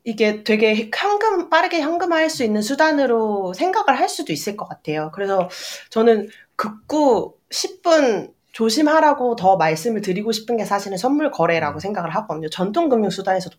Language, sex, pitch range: Korean, female, 185-295 Hz